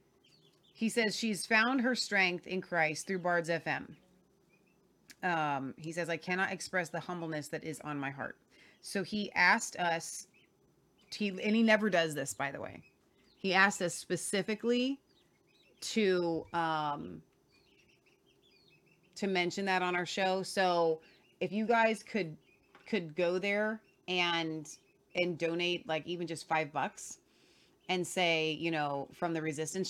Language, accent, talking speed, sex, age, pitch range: English, American, 145 wpm, female, 30-49, 155-190 Hz